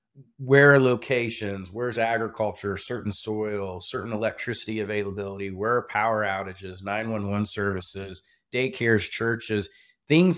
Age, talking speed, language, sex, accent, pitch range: 30-49, 110 wpm, English, male, American, 100-125 Hz